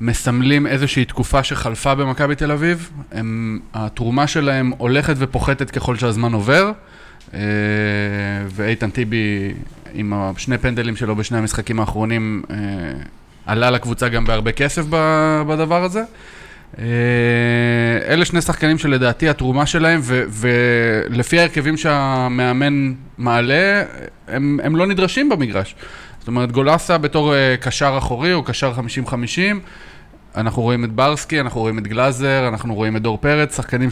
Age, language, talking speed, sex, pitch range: 20-39, Hebrew, 120 wpm, male, 115-145 Hz